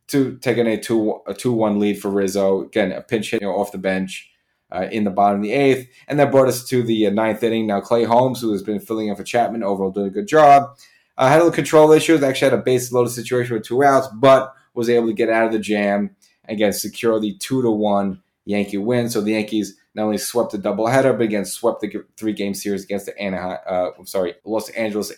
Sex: male